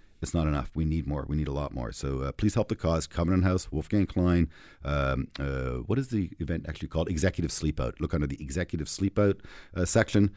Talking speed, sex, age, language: 220 wpm, male, 40-59, English